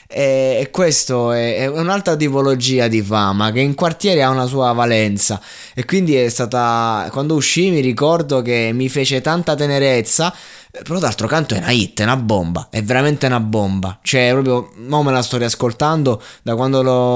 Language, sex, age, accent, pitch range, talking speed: Italian, male, 20-39, native, 110-130 Hz, 175 wpm